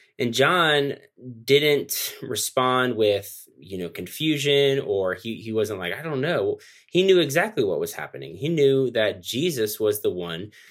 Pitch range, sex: 115-145 Hz, male